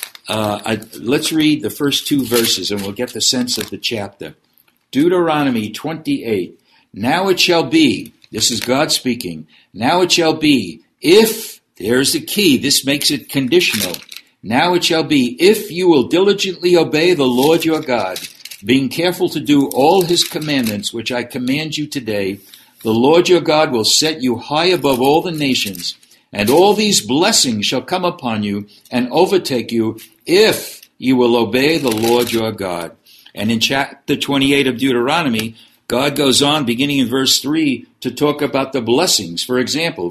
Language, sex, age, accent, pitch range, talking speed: English, male, 60-79, American, 120-160 Hz, 170 wpm